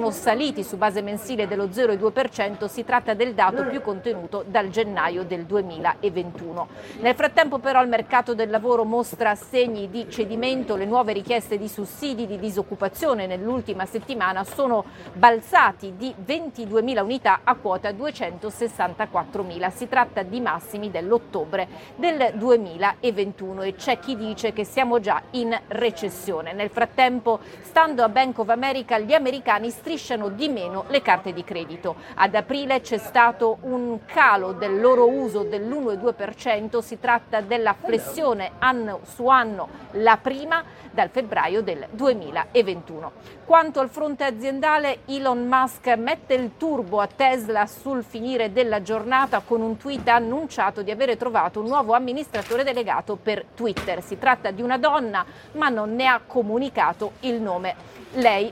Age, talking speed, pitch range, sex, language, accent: 40-59, 145 wpm, 205-255 Hz, female, Italian, native